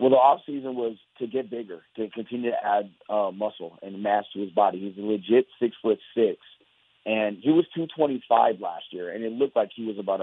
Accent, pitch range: American, 110-140 Hz